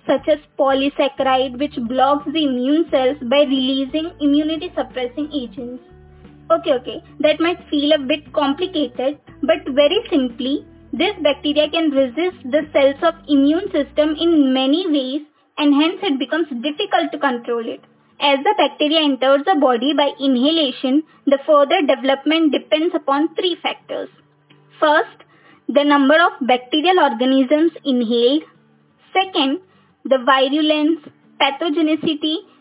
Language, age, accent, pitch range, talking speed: English, 20-39, Indian, 270-320 Hz, 130 wpm